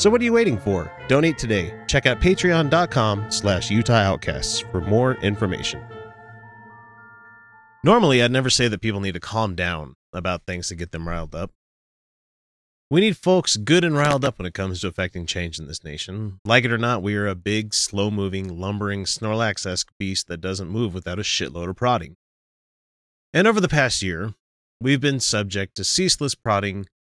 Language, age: English, 30-49